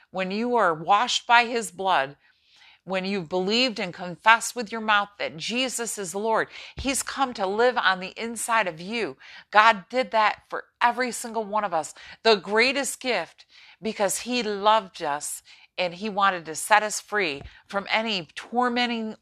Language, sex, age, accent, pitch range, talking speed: English, female, 50-69, American, 185-225 Hz, 170 wpm